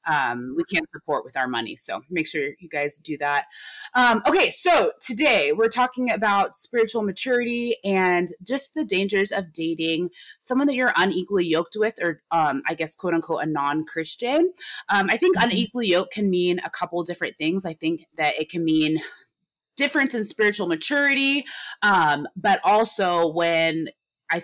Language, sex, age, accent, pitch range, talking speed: English, female, 20-39, American, 165-220 Hz, 170 wpm